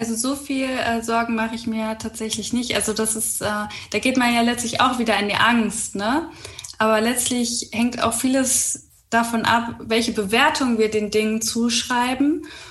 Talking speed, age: 170 wpm, 10-29